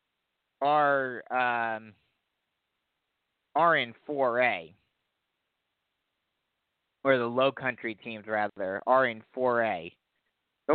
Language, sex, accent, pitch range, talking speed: English, male, American, 110-135 Hz, 95 wpm